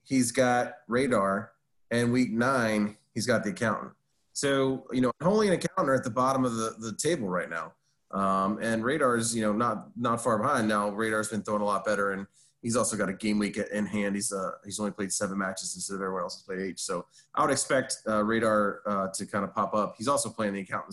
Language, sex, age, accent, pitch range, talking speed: English, male, 30-49, American, 105-130 Hz, 240 wpm